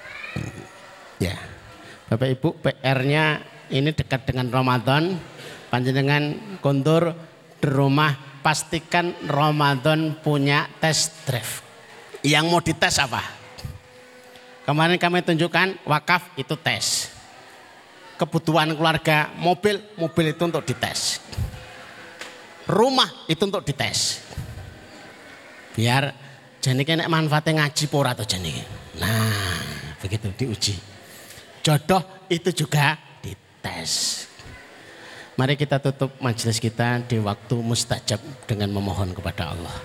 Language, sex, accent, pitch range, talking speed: Indonesian, male, native, 95-150 Hz, 100 wpm